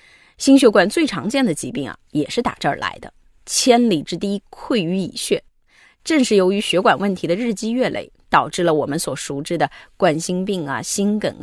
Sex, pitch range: female, 165-230 Hz